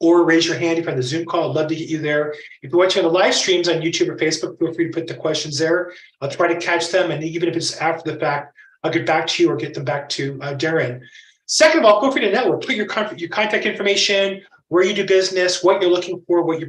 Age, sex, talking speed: 30-49, male, 280 wpm